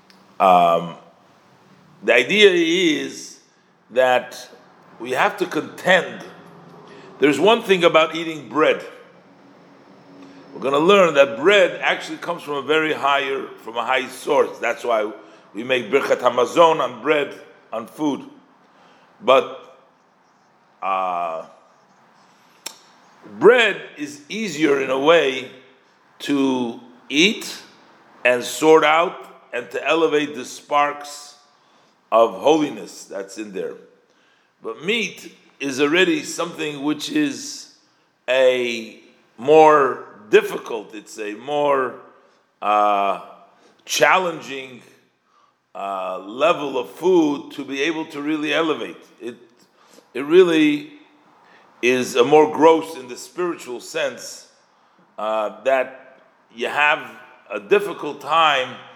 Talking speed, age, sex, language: 110 wpm, 50-69, male, English